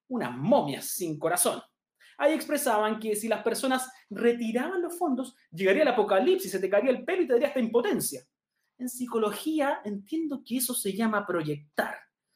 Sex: male